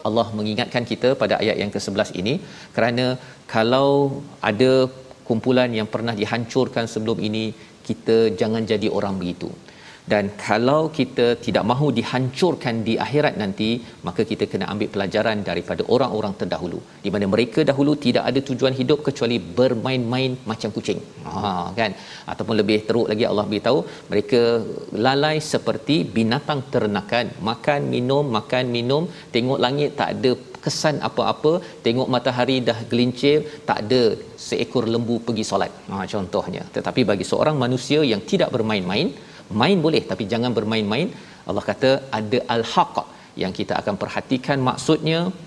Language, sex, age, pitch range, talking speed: Malayalam, male, 40-59, 110-135 Hz, 140 wpm